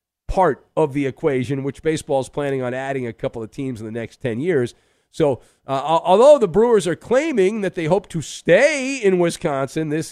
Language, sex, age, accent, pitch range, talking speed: English, male, 50-69, American, 130-190 Hz, 200 wpm